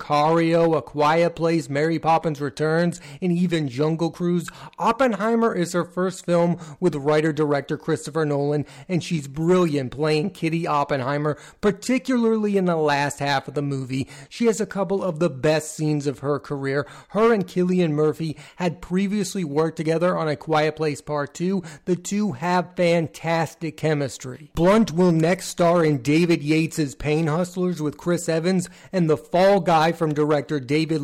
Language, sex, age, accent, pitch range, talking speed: English, male, 30-49, American, 145-175 Hz, 160 wpm